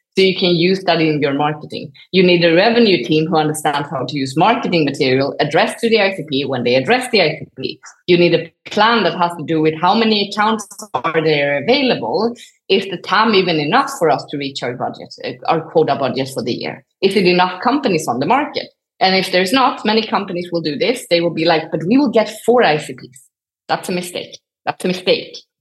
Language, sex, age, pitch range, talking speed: English, female, 30-49, 160-215 Hz, 220 wpm